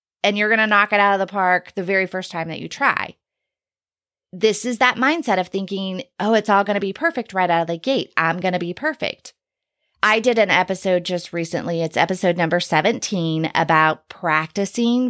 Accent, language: American, English